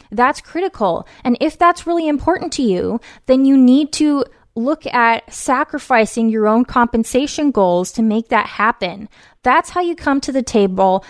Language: English